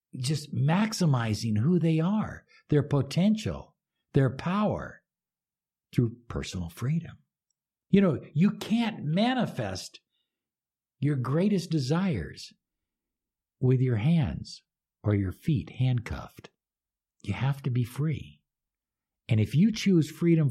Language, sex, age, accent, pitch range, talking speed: English, male, 60-79, American, 120-170 Hz, 110 wpm